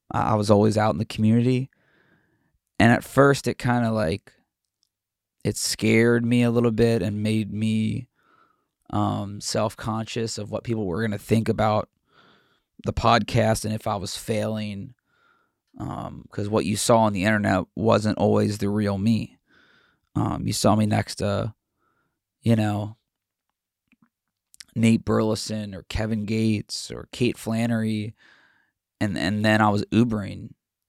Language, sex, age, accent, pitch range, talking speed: English, male, 20-39, American, 105-115 Hz, 145 wpm